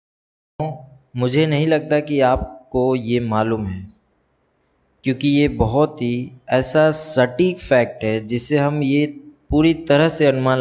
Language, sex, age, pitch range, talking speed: Hindi, male, 20-39, 115-150 Hz, 130 wpm